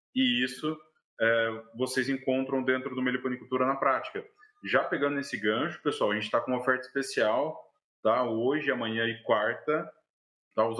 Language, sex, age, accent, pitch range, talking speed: Portuguese, male, 20-39, Brazilian, 120-140 Hz, 160 wpm